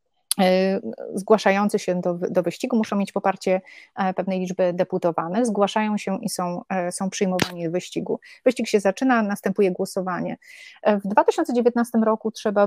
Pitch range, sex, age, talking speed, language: 185-215 Hz, female, 30-49, 135 wpm, Polish